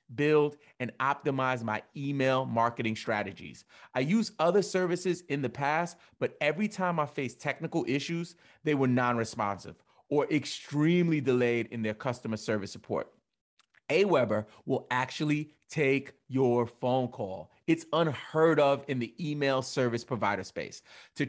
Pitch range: 120-160 Hz